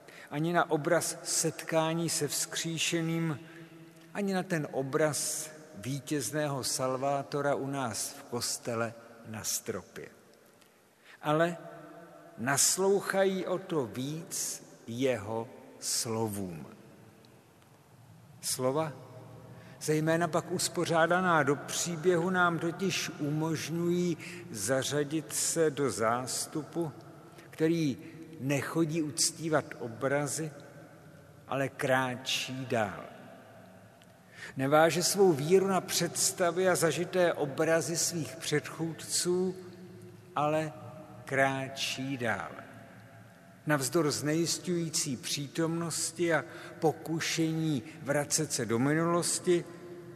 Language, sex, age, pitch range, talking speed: Czech, male, 50-69, 135-165 Hz, 80 wpm